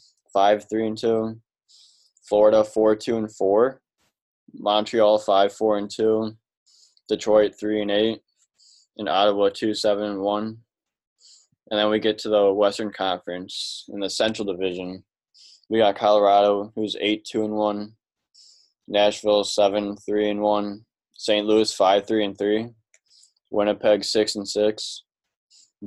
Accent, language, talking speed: American, English, 80 wpm